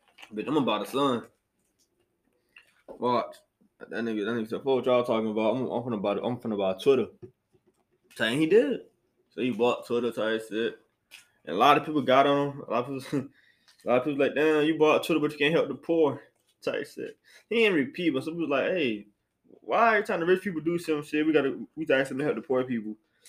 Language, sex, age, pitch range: English, male, 20-39, 110-150 Hz